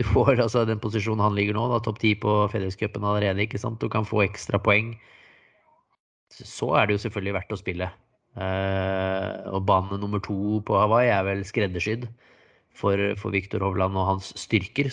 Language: English